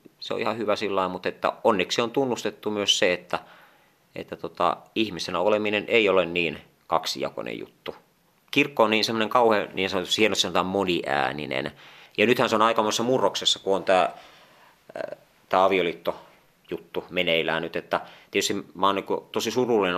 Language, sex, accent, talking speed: Finnish, male, native, 150 wpm